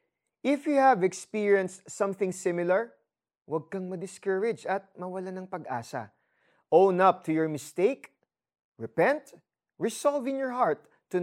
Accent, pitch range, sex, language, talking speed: native, 150-210 Hz, male, Filipino, 130 wpm